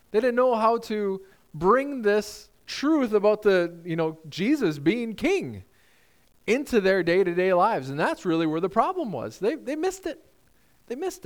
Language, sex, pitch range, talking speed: English, male, 165-250 Hz, 170 wpm